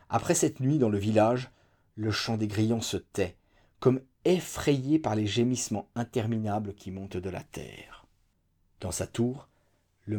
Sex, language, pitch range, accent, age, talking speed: male, French, 95-135 Hz, French, 40-59, 160 wpm